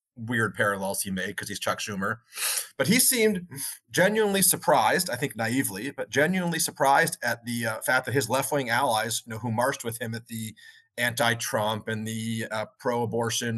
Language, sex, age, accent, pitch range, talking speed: English, male, 30-49, American, 115-145 Hz, 175 wpm